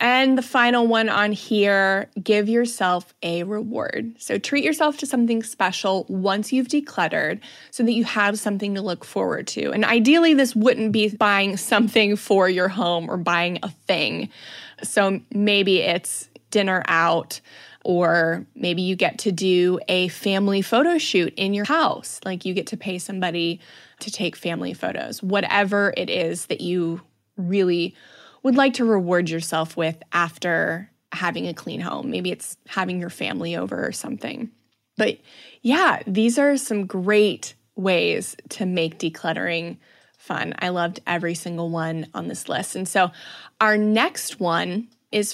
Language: English